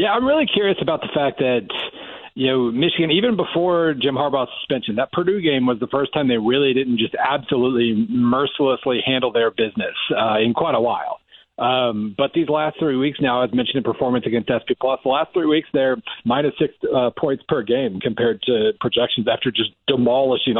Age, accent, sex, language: 40-59, American, male, English